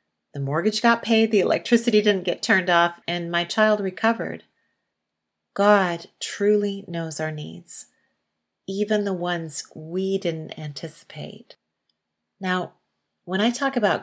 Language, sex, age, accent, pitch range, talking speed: English, female, 40-59, American, 155-200 Hz, 130 wpm